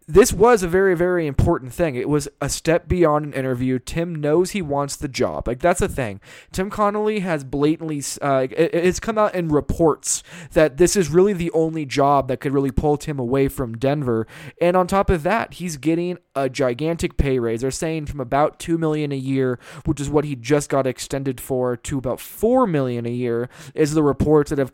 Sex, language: male, English